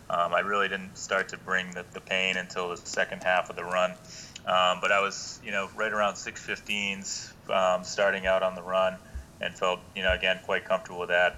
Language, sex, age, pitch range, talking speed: English, male, 30-49, 90-100 Hz, 215 wpm